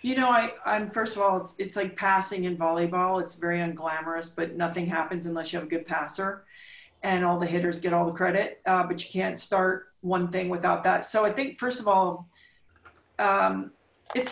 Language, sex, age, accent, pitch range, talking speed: English, female, 40-59, American, 180-225 Hz, 210 wpm